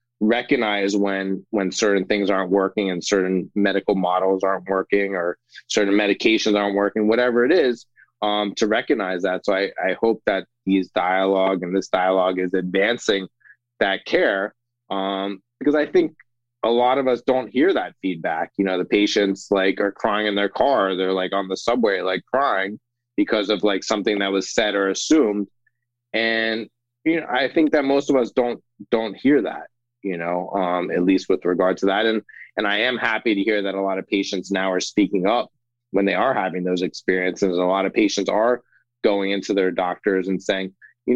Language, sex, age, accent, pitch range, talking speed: English, male, 20-39, American, 95-120 Hz, 195 wpm